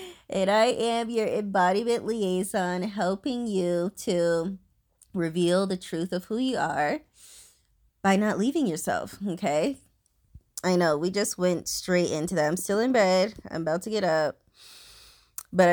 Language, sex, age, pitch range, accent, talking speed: English, female, 20-39, 170-210 Hz, American, 150 wpm